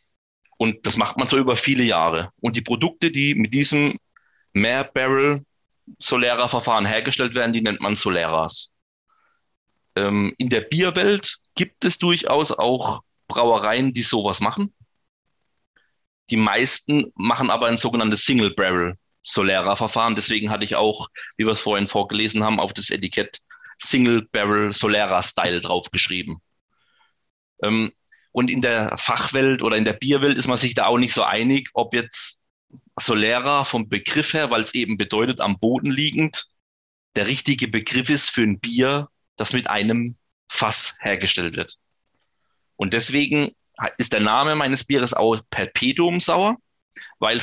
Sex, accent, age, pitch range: male, German, 30-49, 105-135 Hz